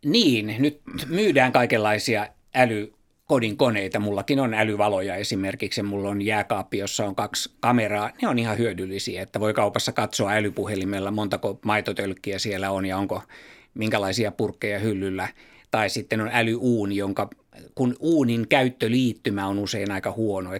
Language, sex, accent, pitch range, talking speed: Finnish, male, native, 100-115 Hz, 135 wpm